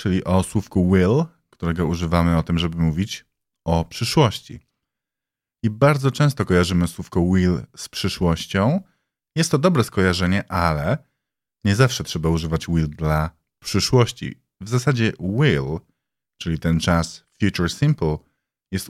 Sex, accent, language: male, native, Polish